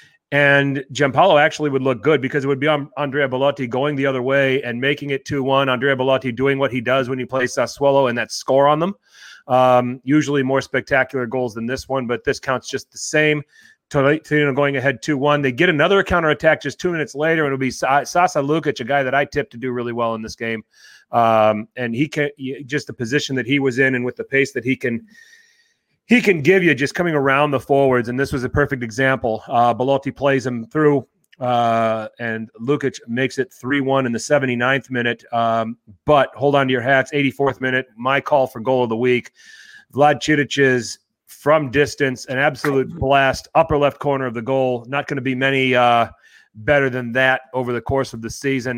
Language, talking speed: English, 210 wpm